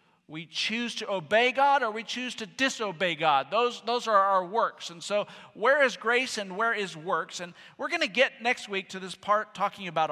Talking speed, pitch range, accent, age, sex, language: 220 wpm, 135-200 Hz, American, 50-69, male, English